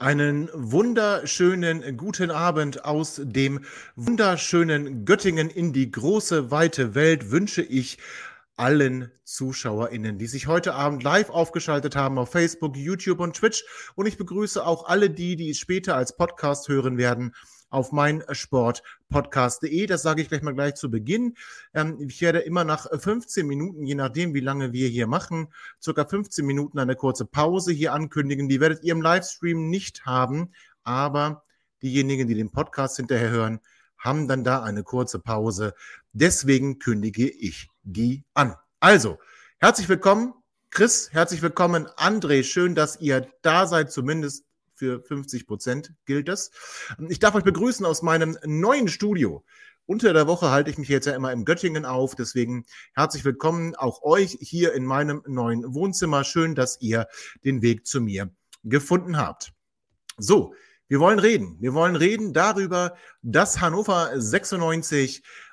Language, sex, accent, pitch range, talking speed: German, male, German, 130-175 Hz, 150 wpm